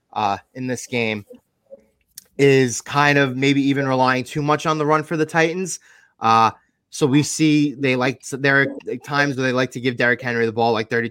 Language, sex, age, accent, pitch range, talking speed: English, male, 20-39, American, 115-140 Hz, 210 wpm